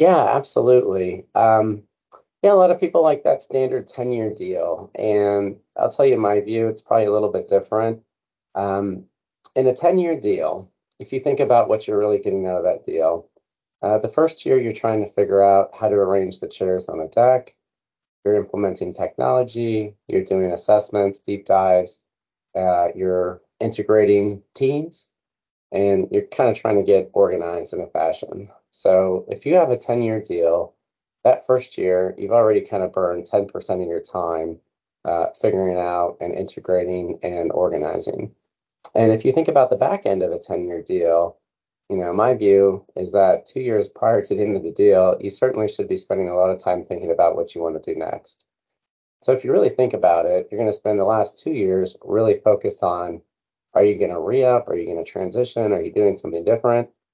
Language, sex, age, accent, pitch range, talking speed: English, male, 30-49, American, 90-125 Hz, 200 wpm